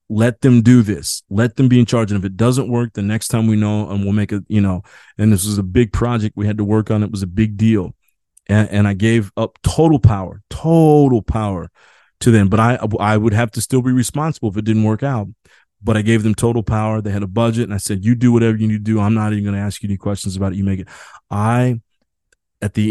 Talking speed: 270 wpm